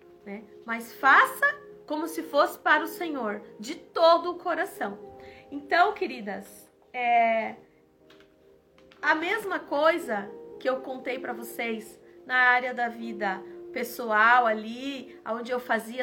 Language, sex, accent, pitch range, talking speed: Portuguese, female, Brazilian, 225-310 Hz, 120 wpm